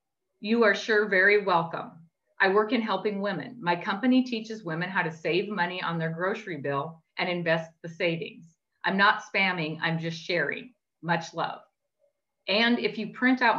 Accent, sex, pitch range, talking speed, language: American, female, 170-220 Hz, 170 wpm, English